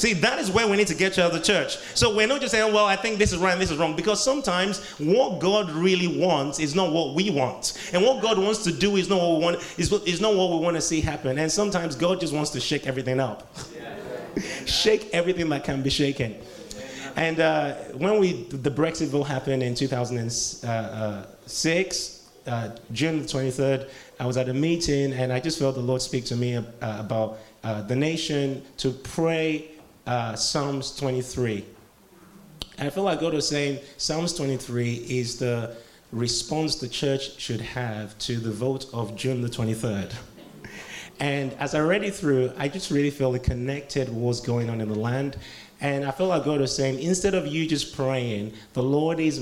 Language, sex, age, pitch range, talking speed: English, male, 30-49, 120-165 Hz, 200 wpm